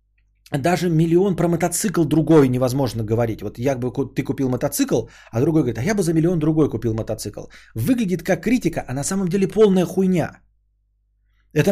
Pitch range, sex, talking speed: 130-185 Hz, male, 175 wpm